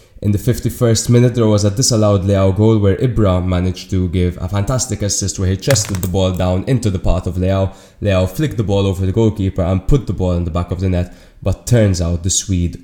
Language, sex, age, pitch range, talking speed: English, male, 20-39, 95-110 Hz, 240 wpm